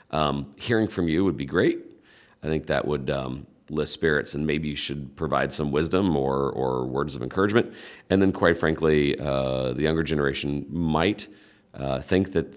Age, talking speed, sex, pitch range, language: 40-59, 180 wpm, male, 70-85 Hz, English